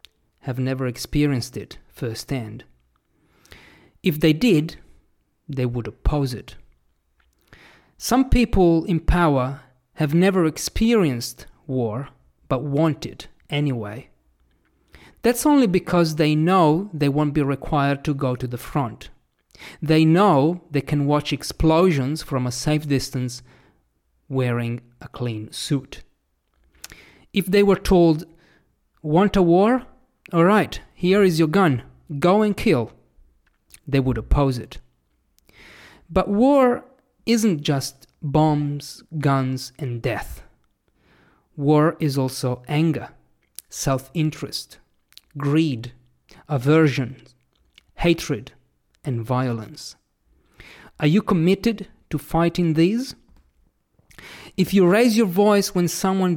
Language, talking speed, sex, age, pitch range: English, 110 wpm, male, 40-59, 125-170 Hz